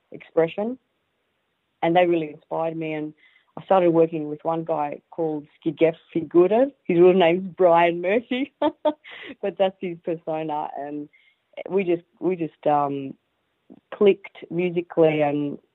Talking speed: 135 wpm